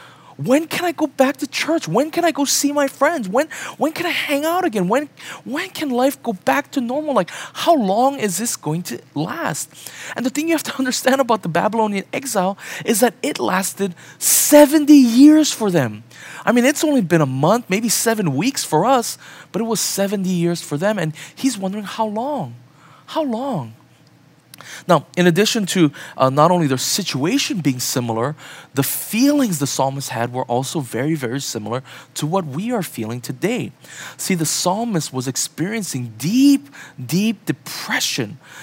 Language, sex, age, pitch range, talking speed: English, male, 20-39, 140-230 Hz, 180 wpm